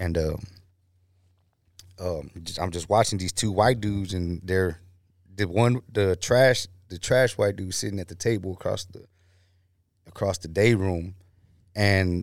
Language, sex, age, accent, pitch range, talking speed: English, male, 20-39, American, 90-100 Hz, 150 wpm